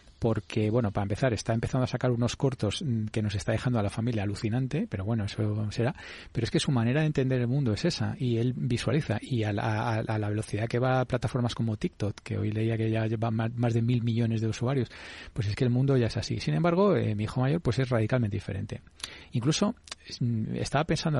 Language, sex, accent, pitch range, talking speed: Spanish, male, Spanish, 110-140 Hz, 235 wpm